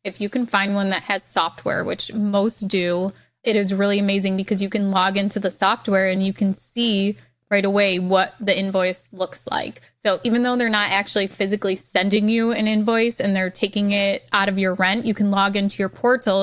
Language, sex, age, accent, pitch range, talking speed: English, female, 20-39, American, 190-210 Hz, 210 wpm